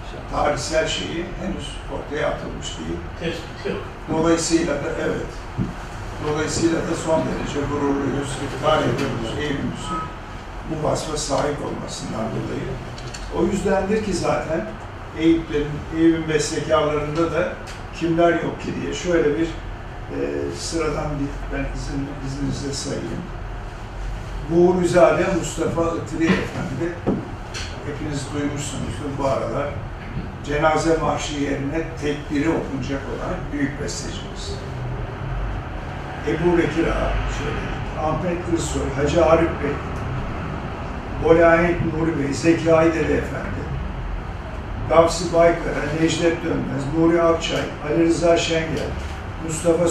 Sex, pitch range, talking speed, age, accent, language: male, 120-165 Hz, 100 wpm, 60-79, native, Turkish